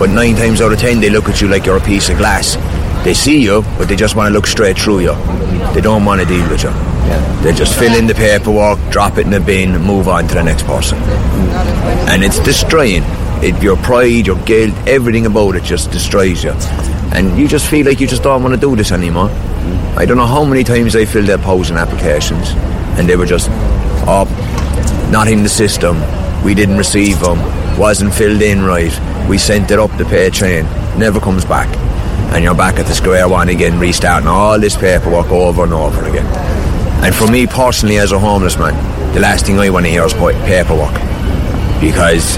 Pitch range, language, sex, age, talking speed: 85-105 Hz, English, male, 30-49, 215 wpm